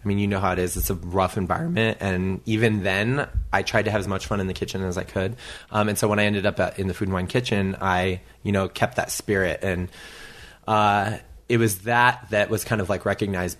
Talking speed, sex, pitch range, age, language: 255 wpm, male, 95-110 Hz, 20-39, English